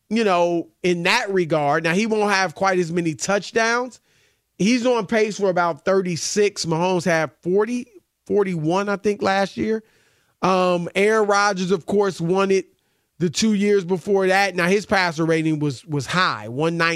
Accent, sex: American, male